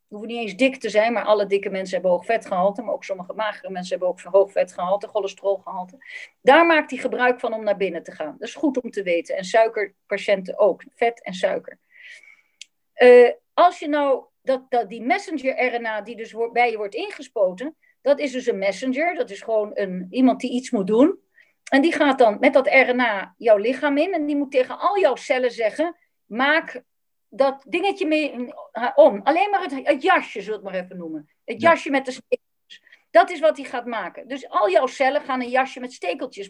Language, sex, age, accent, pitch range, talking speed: Dutch, female, 40-59, Dutch, 205-295 Hz, 210 wpm